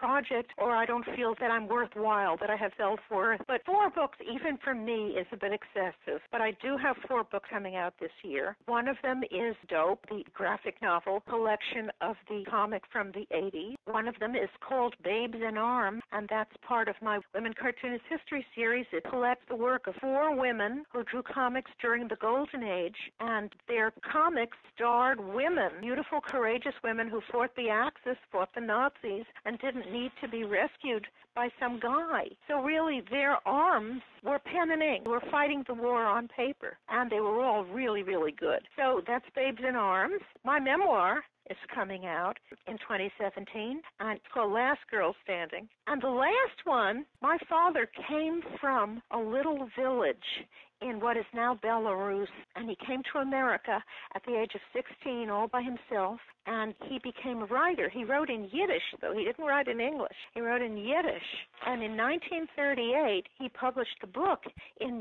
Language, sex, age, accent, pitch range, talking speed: English, female, 60-79, American, 215-270 Hz, 180 wpm